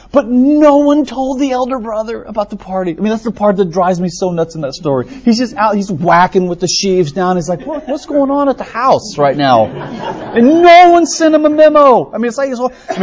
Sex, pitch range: male, 115-185 Hz